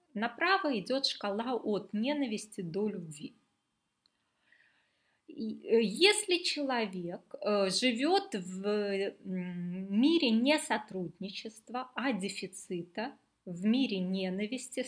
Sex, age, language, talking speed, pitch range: female, 20-39, Russian, 75 wpm, 195-260 Hz